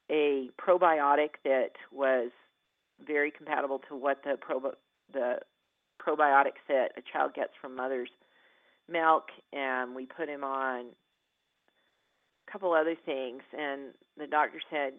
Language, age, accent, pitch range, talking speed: English, 40-59, American, 130-150 Hz, 130 wpm